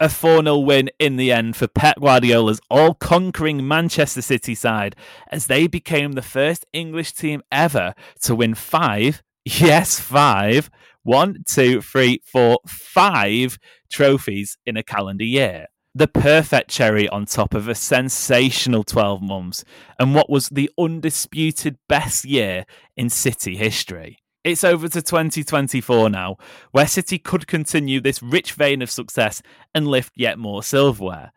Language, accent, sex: English, British, male